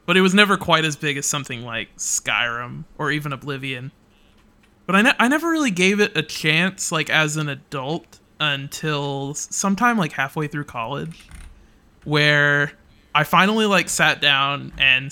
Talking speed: 165 wpm